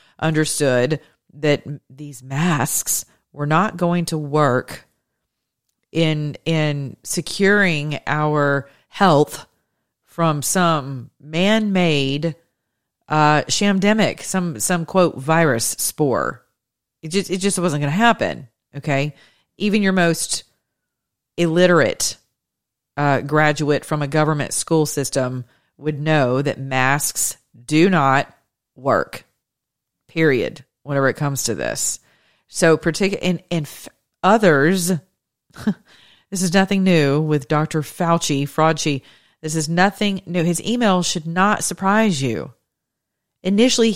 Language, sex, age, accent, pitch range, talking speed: English, female, 40-59, American, 135-185 Hz, 110 wpm